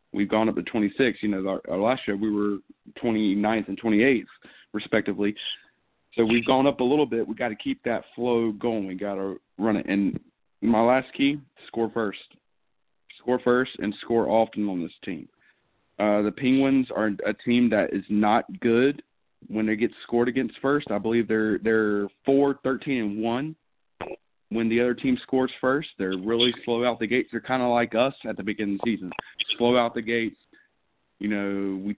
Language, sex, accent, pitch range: English, male, American, 105-120 Hz